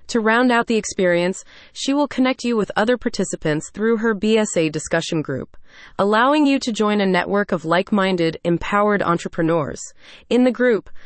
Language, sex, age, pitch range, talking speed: English, female, 30-49, 170-230 Hz, 165 wpm